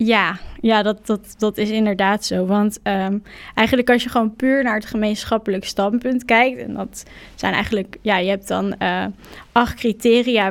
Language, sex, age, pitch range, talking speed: Dutch, female, 10-29, 205-230 Hz, 170 wpm